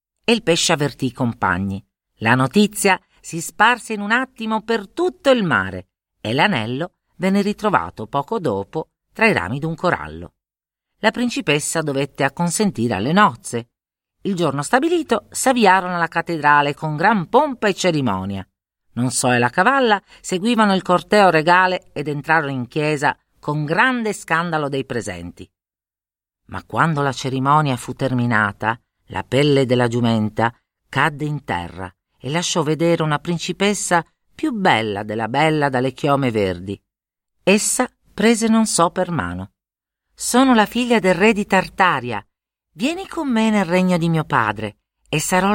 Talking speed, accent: 145 wpm, native